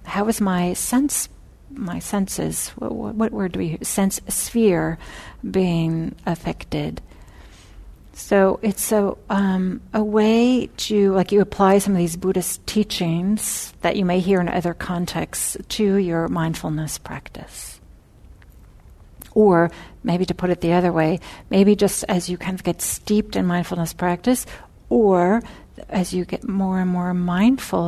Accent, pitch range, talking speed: American, 170-205 Hz, 150 wpm